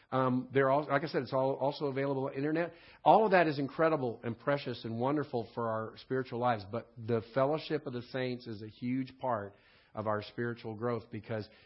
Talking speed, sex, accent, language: 210 wpm, male, American, English